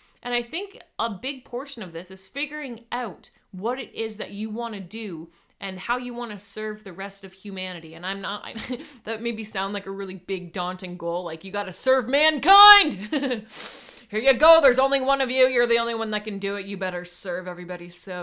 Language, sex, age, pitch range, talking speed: English, female, 30-49, 195-255 Hz, 225 wpm